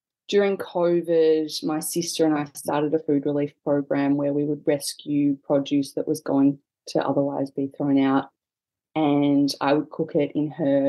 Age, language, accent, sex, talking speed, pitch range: 20-39, English, Australian, female, 170 wpm, 150-180 Hz